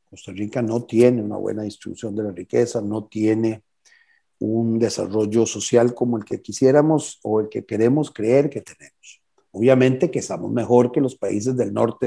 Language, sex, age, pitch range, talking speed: Spanish, male, 50-69, 110-130 Hz, 175 wpm